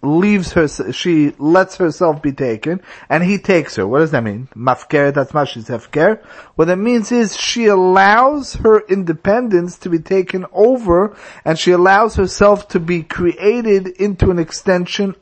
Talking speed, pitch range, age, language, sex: 160 wpm, 145-190 Hz, 40-59, English, male